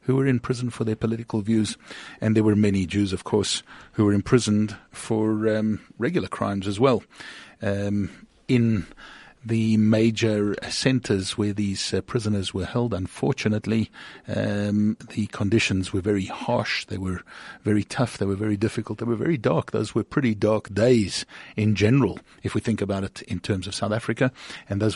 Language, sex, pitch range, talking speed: English, male, 100-120 Hz, 175 wpm